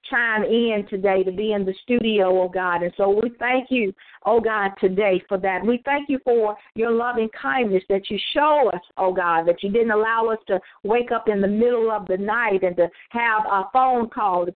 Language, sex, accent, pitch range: English, female, American, 200-245 Hz